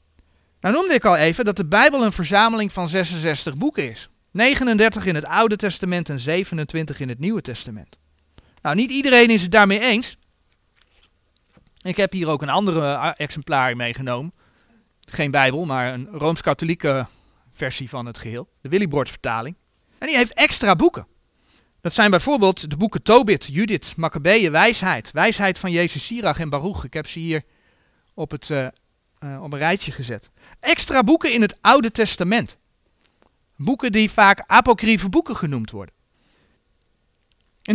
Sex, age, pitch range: male, 40-59, 145-215 Hz